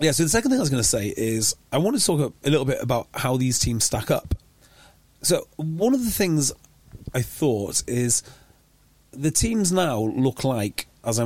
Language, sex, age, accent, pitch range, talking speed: English, male, 30-49, British, 115-155 Hz, 210 wpm